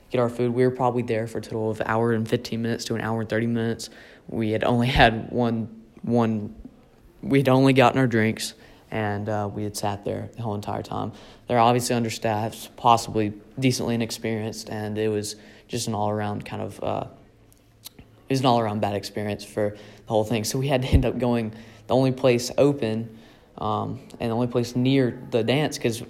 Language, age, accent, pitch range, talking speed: English, 20-39, American, 110-130 Hz, 210 wpm